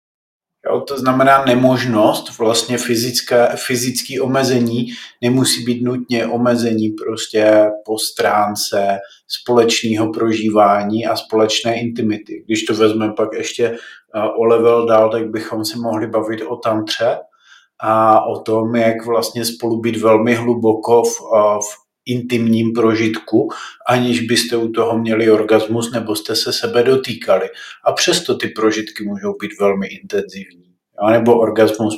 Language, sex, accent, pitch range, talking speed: Czech, male, native, 110-125 Hz, 130 wpm